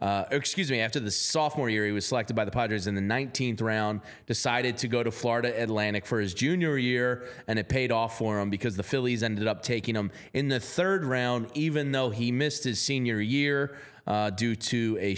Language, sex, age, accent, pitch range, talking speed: English, male, 30-49, American, 115-145 Hz, 215 wpm